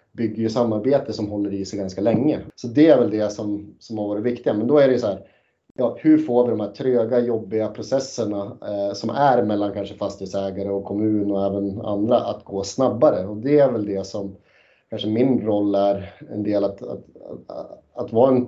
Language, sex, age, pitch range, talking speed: Swedish, male, 30-49, 105-120 Hz, 215 wpm